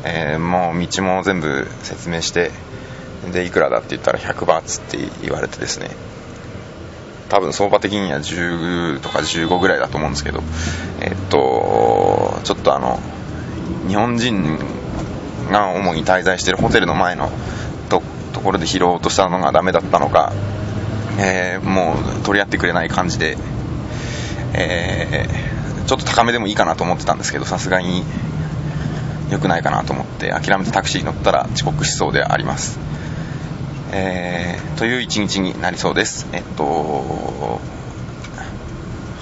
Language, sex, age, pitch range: Japanese, male, 20-39, 90-115 Hz